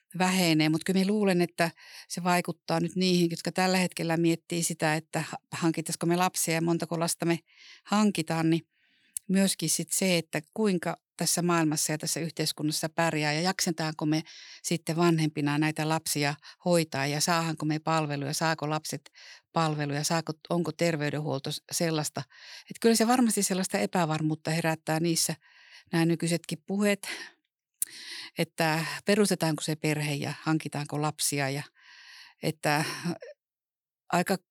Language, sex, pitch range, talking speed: Finnish, female, 155-175 Hz, 130 wpm